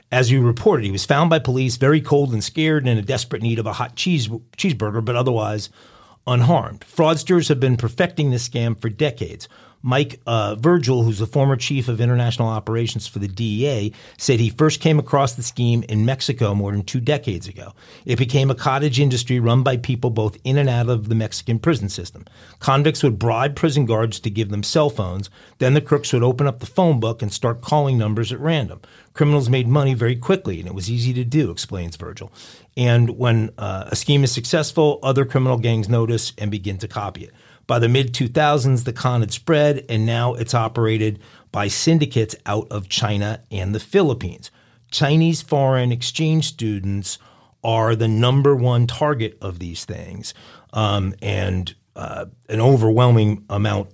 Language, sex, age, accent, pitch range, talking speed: English, male, 40-59, American, 105-135 Hz, 185 wpm